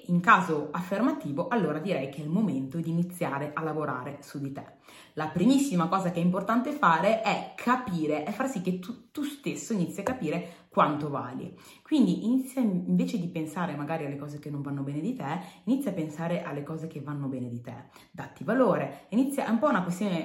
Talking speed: 205 wpm